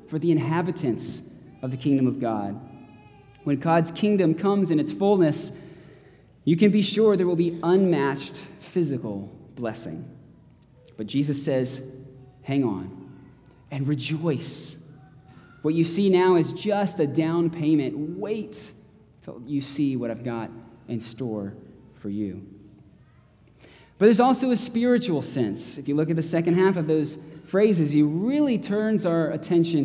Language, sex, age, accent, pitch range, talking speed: English, male, 20-39, American, 130-175 Hz, 145 wpm